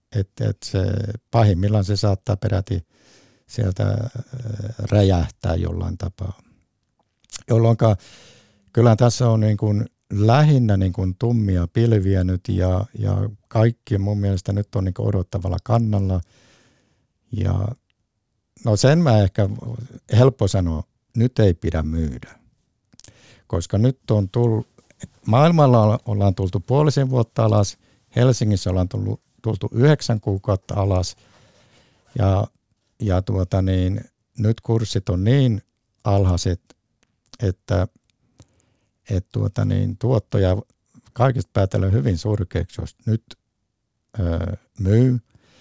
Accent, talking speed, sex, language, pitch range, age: native, 110 wpm, male, Finnish, 95-115 Hz, 60-79